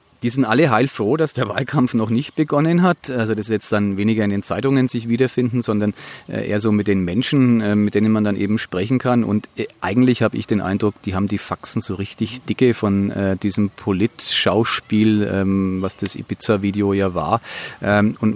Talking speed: 185 wpm